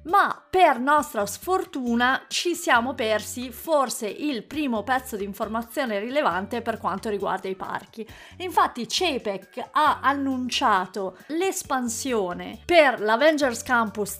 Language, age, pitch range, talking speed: Italian, 30-49, 205-265 Hz, 115 wpm